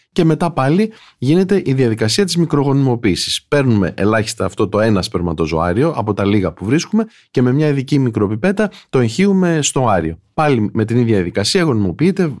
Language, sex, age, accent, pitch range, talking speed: Greek, male, 30-49, native, 105-155 Hz, 165 wpm